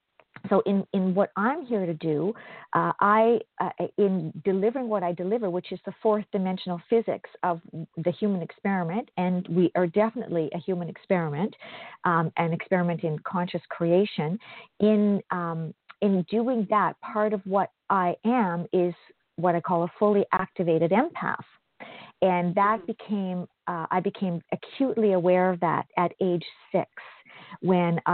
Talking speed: 150 wpm